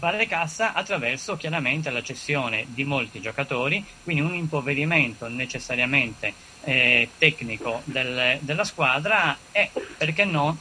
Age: 30-49